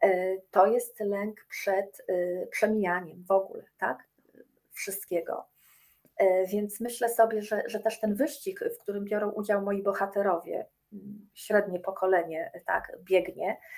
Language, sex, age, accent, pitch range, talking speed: Polish, female, 40-59, native, 195-235 Hz, 120 wpm